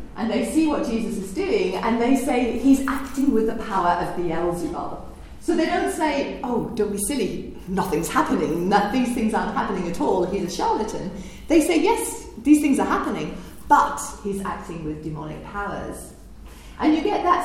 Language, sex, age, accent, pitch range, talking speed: English, female, 40-59, British, 195-300 Hz, 190 wpm